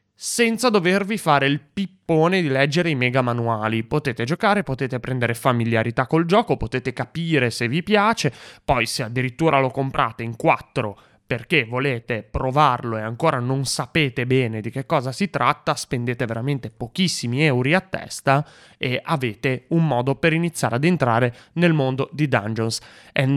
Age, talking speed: 20-39, 155 wpm